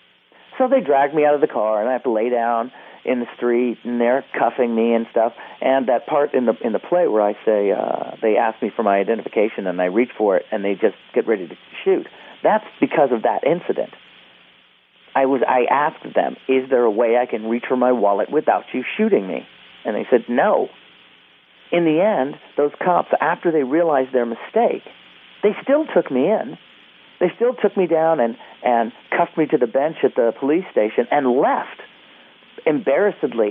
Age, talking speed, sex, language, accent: 40-59, 205 wpm, male, English, American